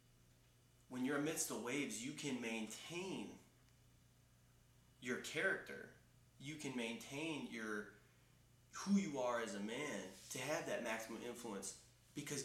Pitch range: 115-145 Hz